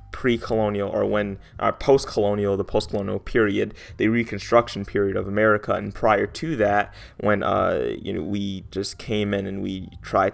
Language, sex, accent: English, male, American